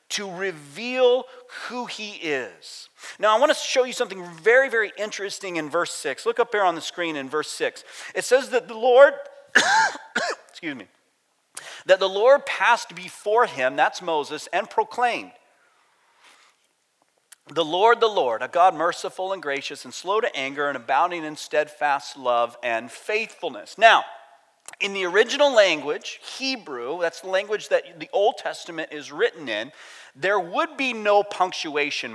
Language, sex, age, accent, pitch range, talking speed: English, male, 40-59, American, 160-245 Hz, 160 wpm